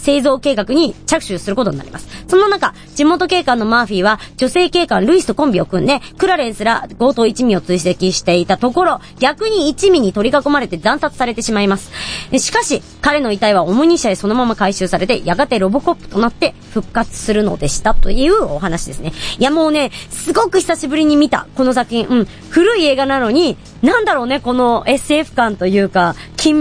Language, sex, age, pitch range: Japanese, male, 40-59, 200-335 Hz